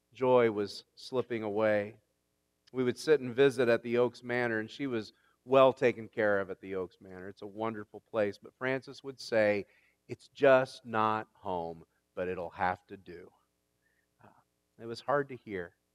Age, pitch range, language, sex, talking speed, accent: 40-59, 100-125 Hz, English, male, 175 wpm, American